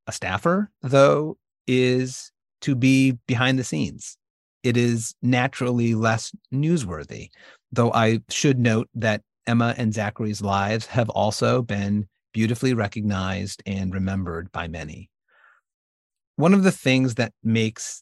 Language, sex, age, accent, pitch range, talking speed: English, male, 30-49, American, 105-130 Hz, 125 wpm